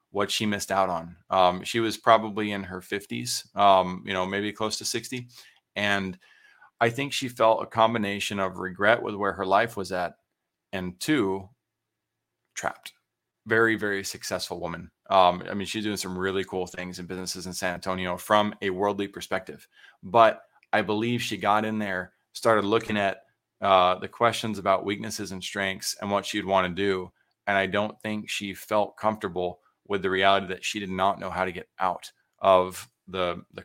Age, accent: 30-49, American